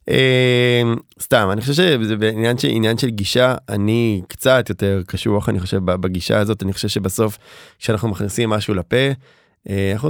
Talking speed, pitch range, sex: 160 wpm, 100-125 Hz, male